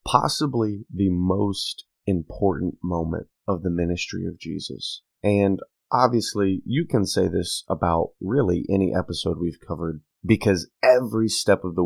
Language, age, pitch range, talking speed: English, 30-49, 90-110 Hz, 135 wpm